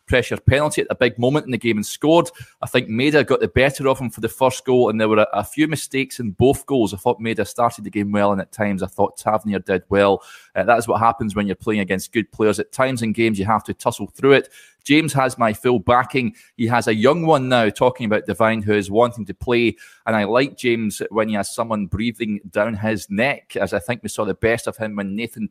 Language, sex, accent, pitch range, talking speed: English, male, British, 100-120 Hz, 260 wpm